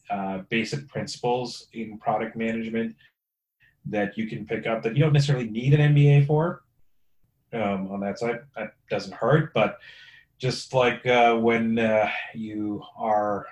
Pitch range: 100-115 Hz